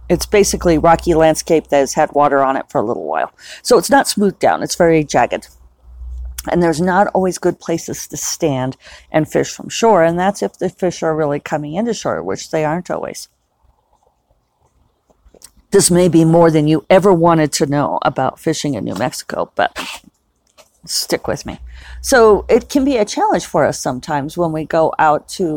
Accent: American